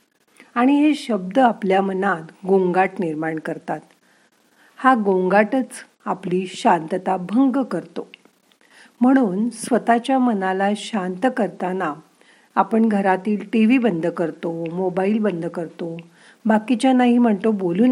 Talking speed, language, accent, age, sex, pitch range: 105 wpm, Marathi, native, 50-69, female, 180-235 Hz